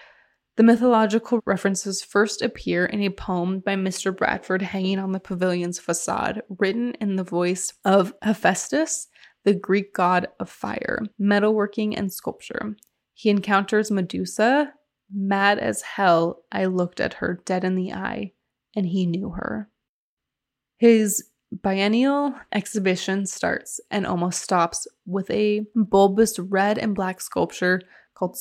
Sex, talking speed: female, 135 wpm